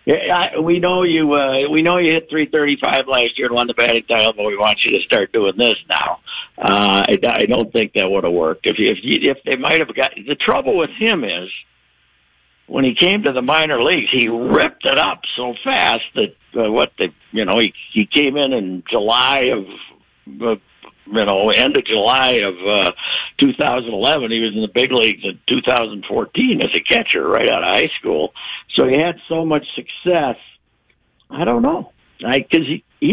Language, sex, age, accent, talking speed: English, male, 60-79, American, 205 wpm